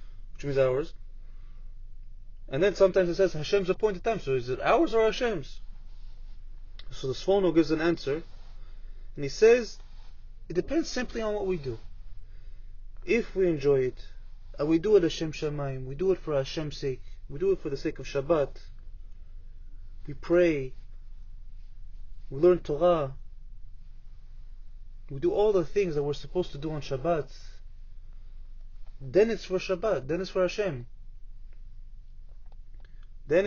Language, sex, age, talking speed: English, male, 30-49, 150 wpm